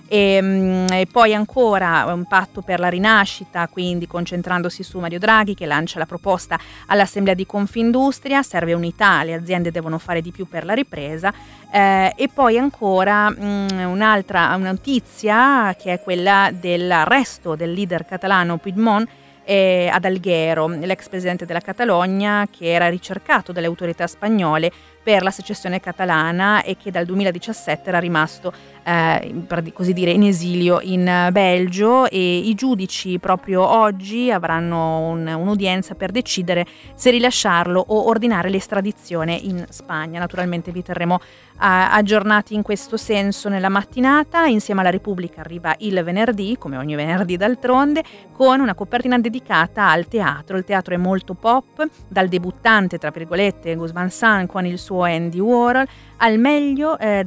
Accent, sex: native, female